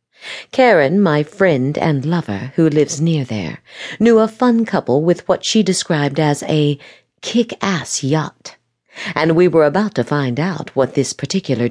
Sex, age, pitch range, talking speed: female, 50-69, 140-195 Hz, 160 wpm